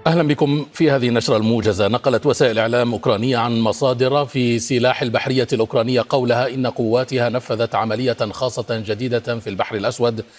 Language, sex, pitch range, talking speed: Arabic, male, 115-140 Hz, 150 wpm